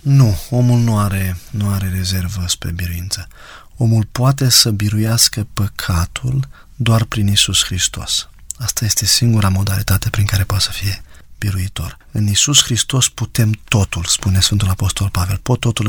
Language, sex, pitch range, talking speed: Romanian, male, 100-120 Hz, 145 wpm